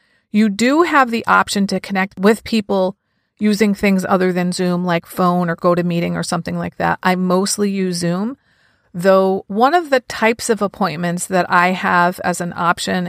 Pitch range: 180-215 Hz